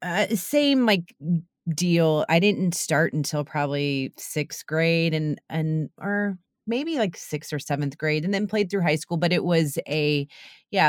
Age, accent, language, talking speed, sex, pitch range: 30-49, American, English, 170 wpm, female, 150-180 Hz